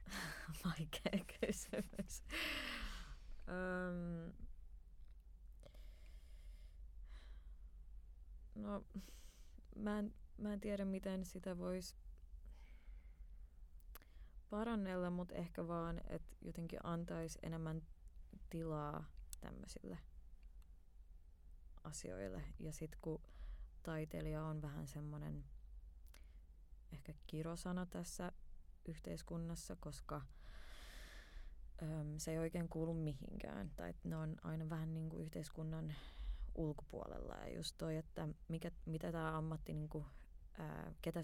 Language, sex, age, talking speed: Finnish, female, 20-39, 85 wpm